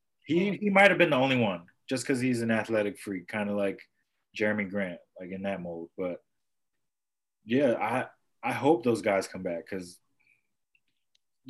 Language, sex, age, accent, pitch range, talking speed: English, male, 30-49, American, 100-120 Hz, 170 wpm